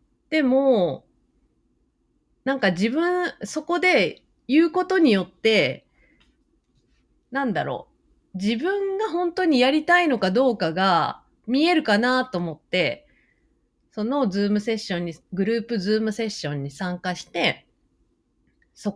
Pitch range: 185-285 Hz